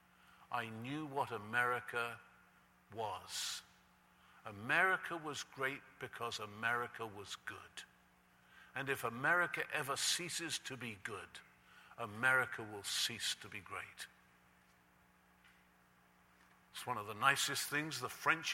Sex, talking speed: male, 110 wpm